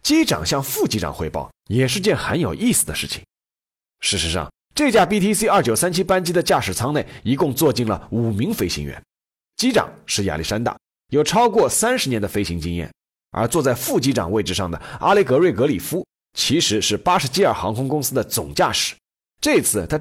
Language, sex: Chinese, male